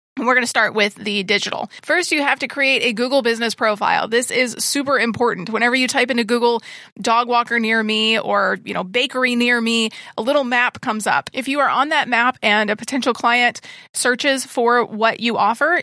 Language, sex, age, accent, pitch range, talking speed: English, female, 30-49, American, 215-245 Hz, 210 wpm